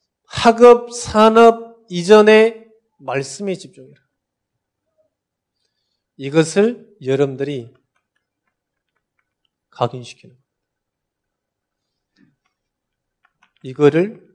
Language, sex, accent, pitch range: Korean, male, native, 125-185 Hz